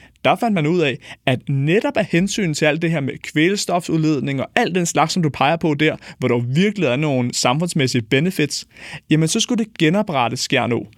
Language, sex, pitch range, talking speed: Danish, male, 145-195 Hz, 200 wpm